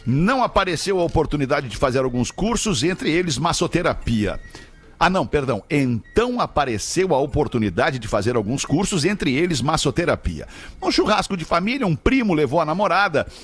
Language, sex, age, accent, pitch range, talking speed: Portuguese, male, 50-69, Brazilian, 130-195 Hz, 150 wpm